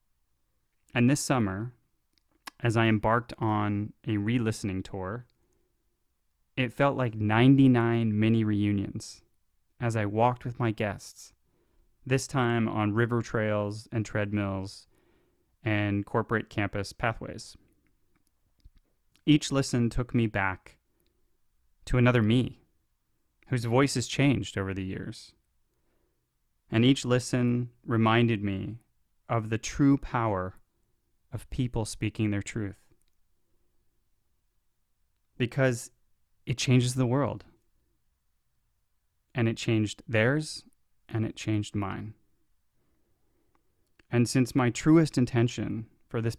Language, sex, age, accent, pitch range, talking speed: English, male, 30-49, American, 105-125 Hz, 105 wpm